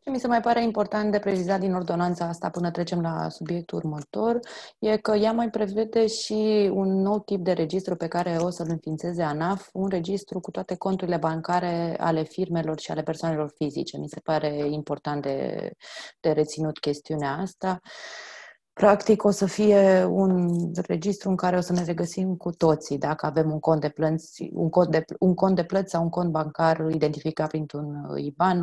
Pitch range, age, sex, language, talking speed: 155-195 Hz, 20-39, female, Romanian, 185 wpm